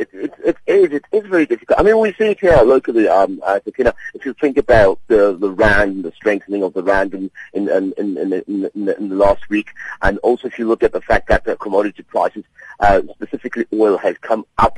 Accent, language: British, English